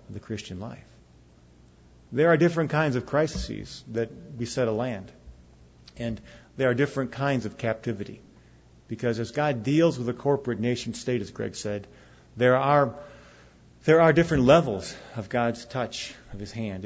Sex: male